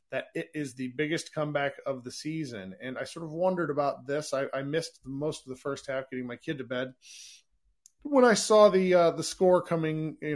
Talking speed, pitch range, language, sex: 225 wpm, 130-155 Hz, English, male